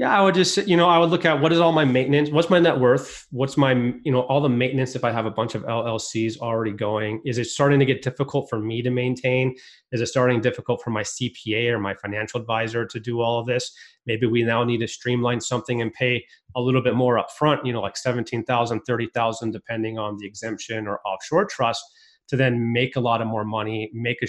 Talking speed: 240 wpm